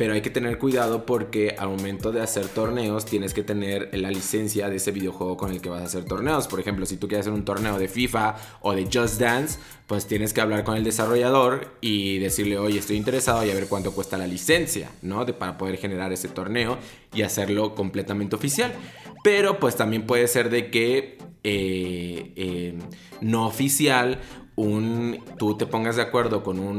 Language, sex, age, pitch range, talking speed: Spanish, male, 20-39, 100-125 Hz, 190 wpm